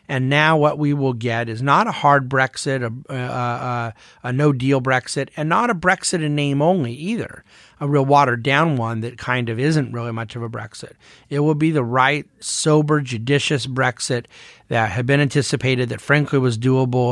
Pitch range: 120-145 Hz